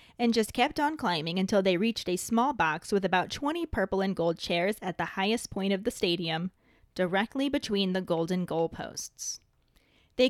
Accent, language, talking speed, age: American, English, 180 wpm, 20-39